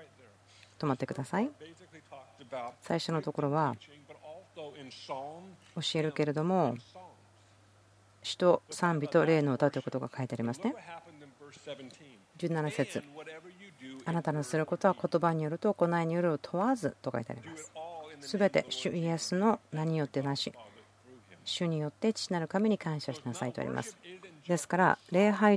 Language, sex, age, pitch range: Japanese, female, 40-59, 140-180 Hz